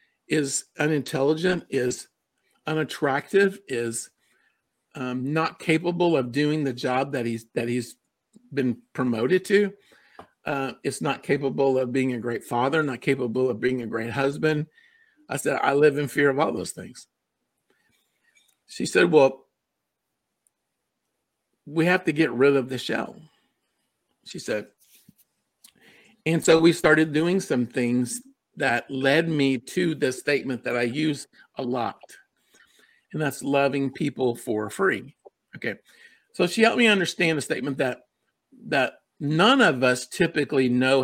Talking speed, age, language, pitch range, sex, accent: 140 wpm, 50-69, English, 130-170 Hz, male, American